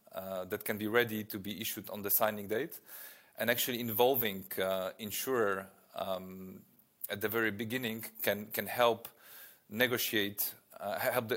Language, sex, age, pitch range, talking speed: English, male, 30-49, 100-120 Hz, 145 wpm